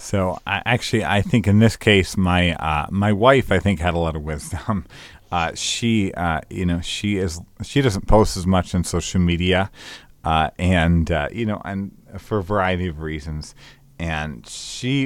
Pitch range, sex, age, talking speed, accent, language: 85-100 Hz, male, 30-49, 185 wpm, American, English